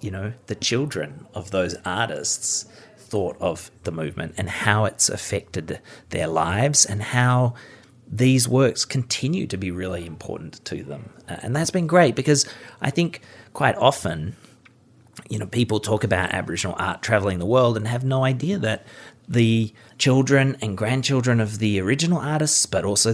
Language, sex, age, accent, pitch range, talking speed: English, male, 30-49, Australian, 95-125 Hz, 160 wpm